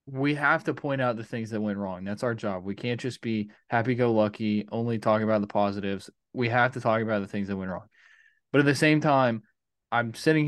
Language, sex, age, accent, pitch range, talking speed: English, male, 20-39, American, 105-130 Hz, 230 wpm